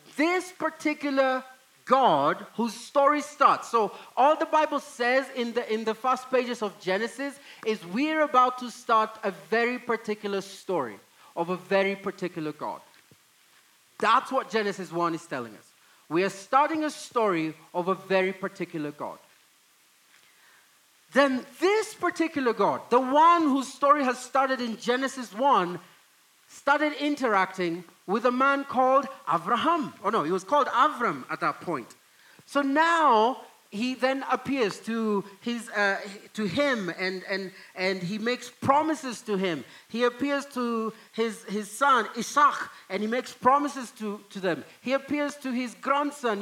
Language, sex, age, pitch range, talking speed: English, male, 30-49, 205-280 Hz, 150 wpm